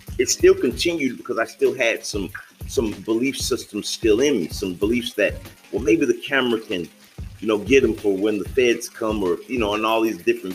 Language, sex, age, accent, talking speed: English, male, 40-59, American, 215 wpm